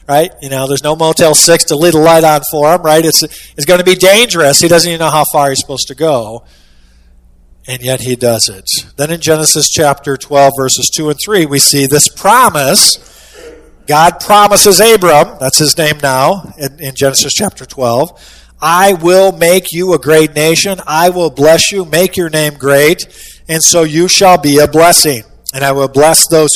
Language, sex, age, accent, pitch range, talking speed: English, male, 50-69, American, 135-175 Hz, 200 wpm